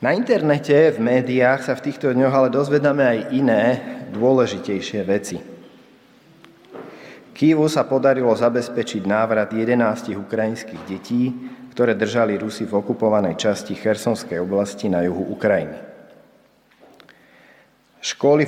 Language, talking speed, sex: Slovak, 110 wpm, male